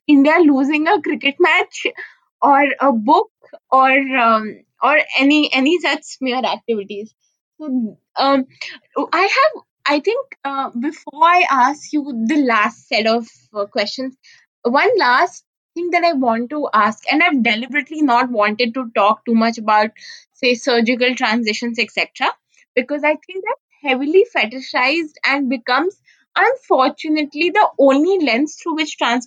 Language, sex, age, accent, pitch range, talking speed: English, female, 20-39, Indian, 245-325 Hz, 145 wpm